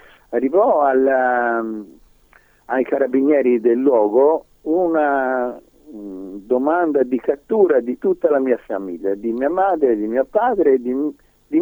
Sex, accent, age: male, native, 50-69